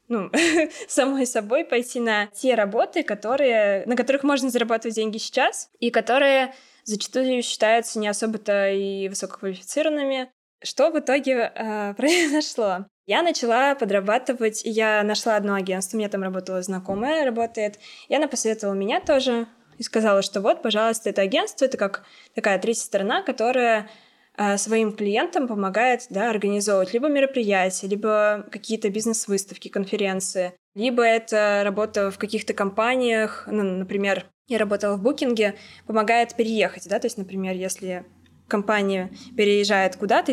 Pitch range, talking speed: 200-240 Hz, 135 wpm